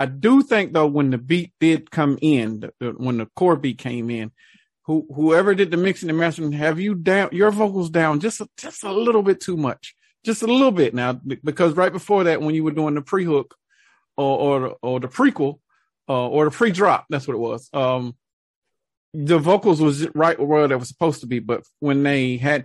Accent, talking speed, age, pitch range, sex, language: American, 205 wpm, 40-59, 135-180 Hz, male, English